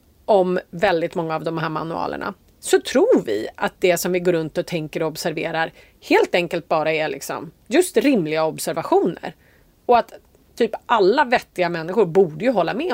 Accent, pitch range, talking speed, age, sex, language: native, 175-270 Hz, 175 wpm, 30-49, female, Swedish